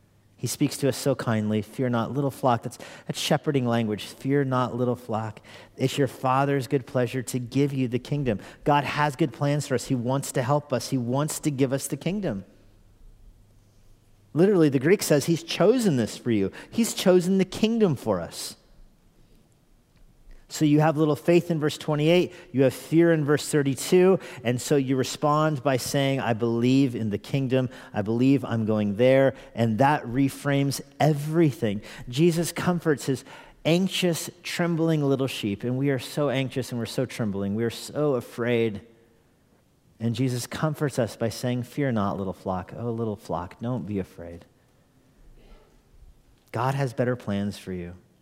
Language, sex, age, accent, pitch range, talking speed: English, male, 40-59, American, 115-150 Hz, 170 wpm